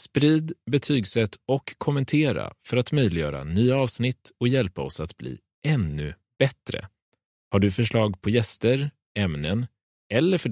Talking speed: 135 wpm